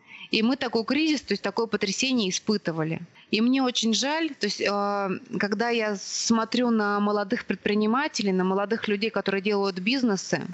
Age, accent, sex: 20-39, native, female